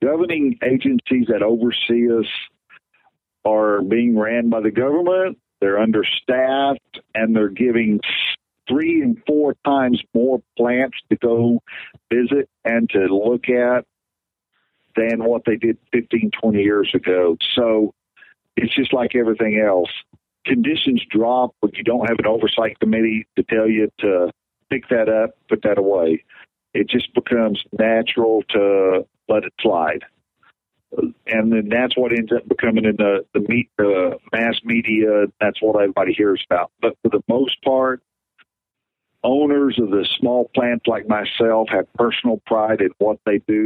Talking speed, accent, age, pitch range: 145 wpm, American, 50-69, 105-125 Hz